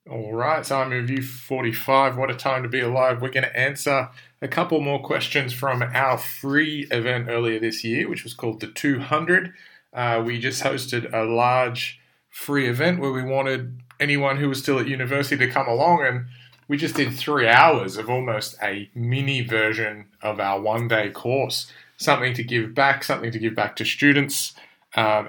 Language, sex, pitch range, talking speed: English, male, 115-140 Hz, 185 wpm